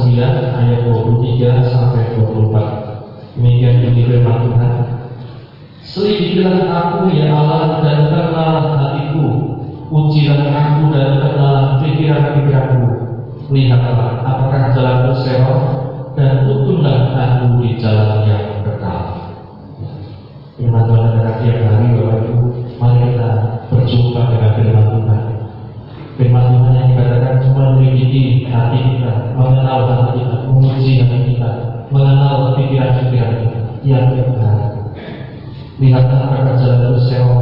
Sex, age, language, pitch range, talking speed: male, 40-59, Indonesian, 115-130 Hz, 95 wpm